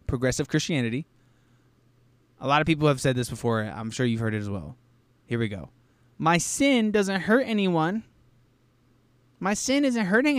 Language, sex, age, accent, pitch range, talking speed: English, male, 20-39, American, 120-165 Hz, 175 wpm